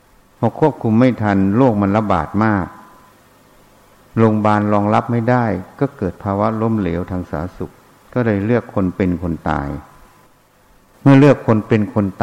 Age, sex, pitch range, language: 60-79, male, 95-120 Hz, Thai